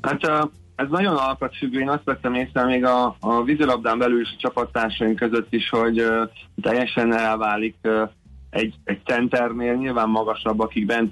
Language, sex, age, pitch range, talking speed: Hungarian, male, 20-39, 110-125 Hz, 150 wpm